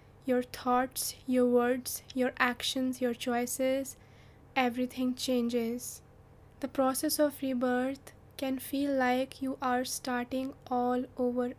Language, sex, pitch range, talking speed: English, female, 245-265 Hz, 115 wpm